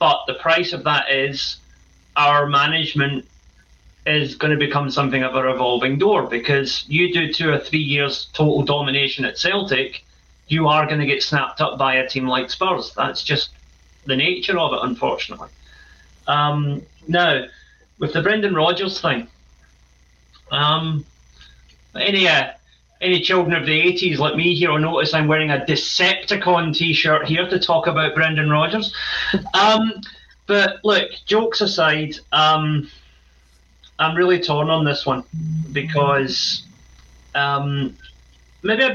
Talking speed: 145 wpm